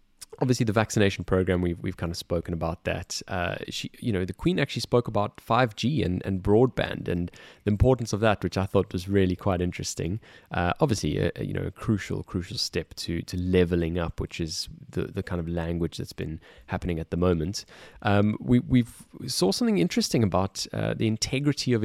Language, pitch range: English, 90-110 Hz